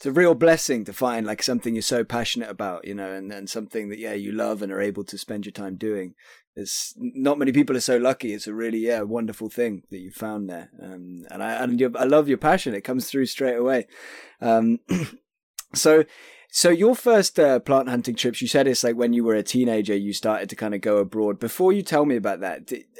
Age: 20-39